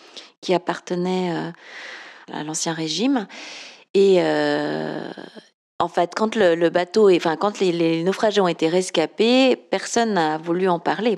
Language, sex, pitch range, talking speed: French, female, 170-205 Hz, 140 wpm